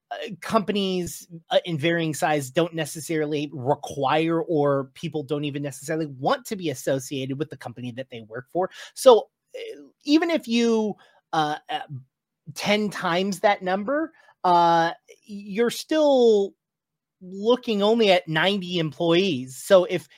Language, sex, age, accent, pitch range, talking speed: English, male, 30-49, American, 140-200 Hz, 125 wpm